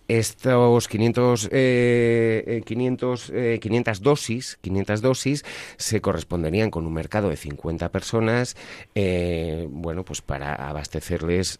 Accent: Spanish